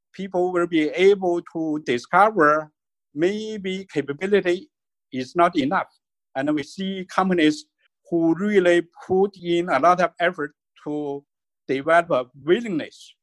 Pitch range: 150-180 Hz